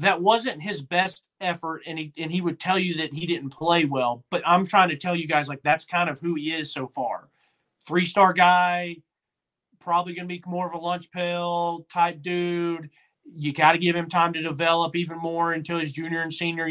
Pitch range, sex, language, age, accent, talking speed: 155-180 Hz, male, English, 30-49, American, 220 wpm